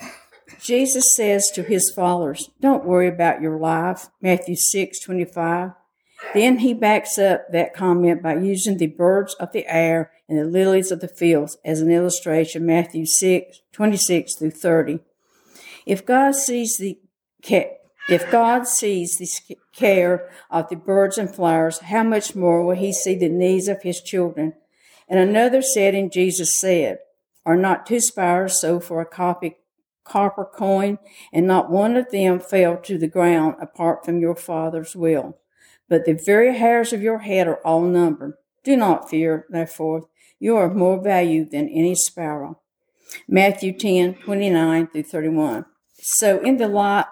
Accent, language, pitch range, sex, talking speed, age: American, English, 170-205 Hz, female, 165 wpm, 60-79